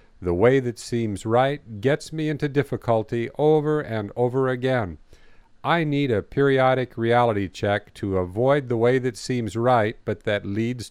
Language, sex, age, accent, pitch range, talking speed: English, male, 50-69, American, 105-130 Hz, 160 wpm